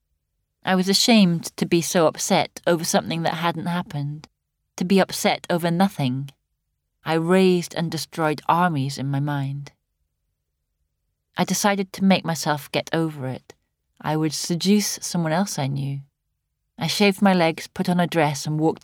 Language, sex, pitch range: English, female, 130-175 Hz